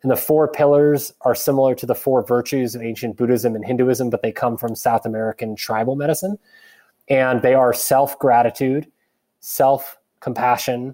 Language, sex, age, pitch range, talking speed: English, male, 20-39, 120-140 Hz, 155 wpm